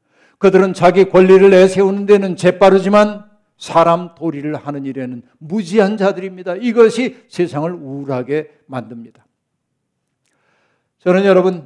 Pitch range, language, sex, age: 155-190 Hz, Korean, male, 60-79